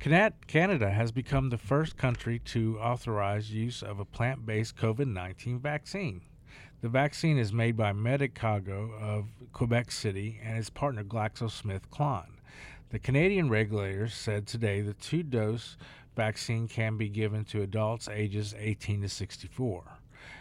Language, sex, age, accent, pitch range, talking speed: English, male, 50-69, American, 105-130 Hz, 130 wpm